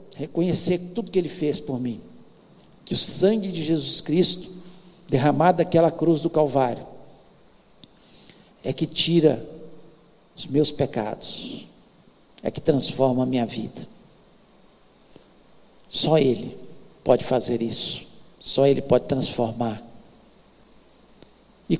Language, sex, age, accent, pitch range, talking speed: Portuguese, male, 60-79, Brazilian, 150-190 Hz, 110 wpm